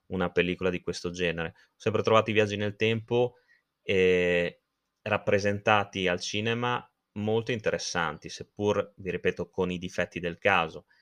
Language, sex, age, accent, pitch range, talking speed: Italian, male, 20-39, native, 85-100 Hz, 140 wpm